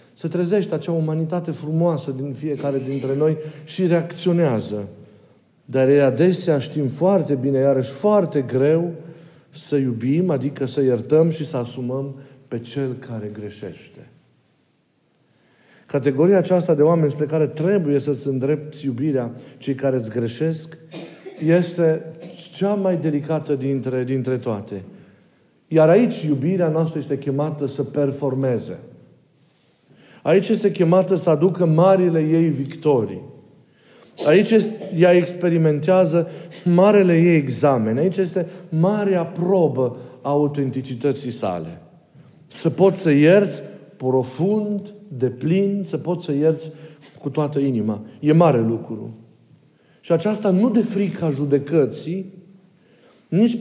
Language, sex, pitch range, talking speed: Romanian, male, 135-180 Hz, 120 wpm